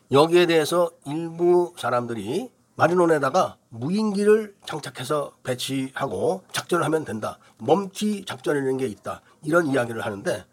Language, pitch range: Korean, 135-185 Hz